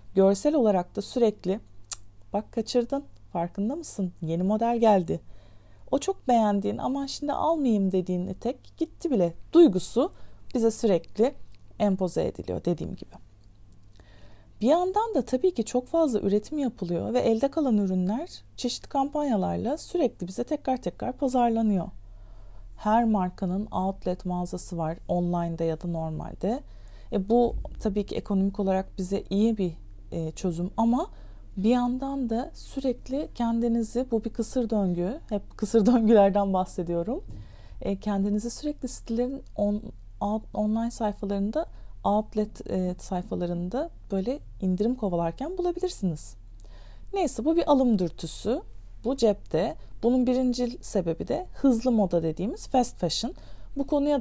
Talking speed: 125 wpm